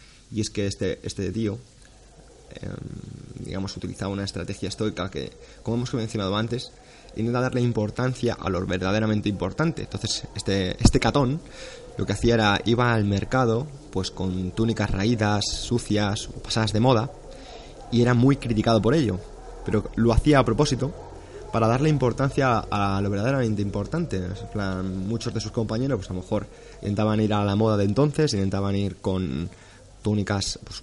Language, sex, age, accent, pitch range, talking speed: Spanish, male, 20-39, Spanish, 100-120 Hz, 160 wpm